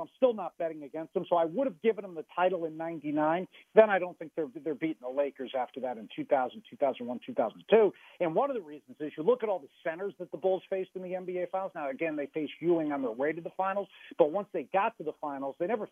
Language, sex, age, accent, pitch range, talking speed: English, male, 50-69, American, 150-185 Hz, 270 wpm